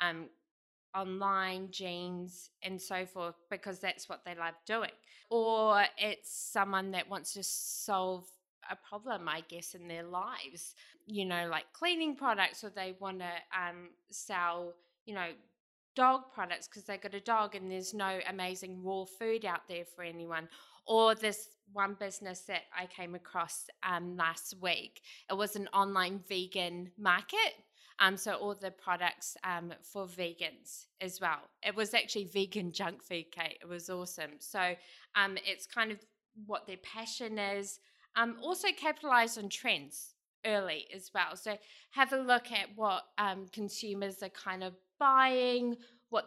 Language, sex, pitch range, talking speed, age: English, female, 180-215 Hz, 160 wpm, 20-39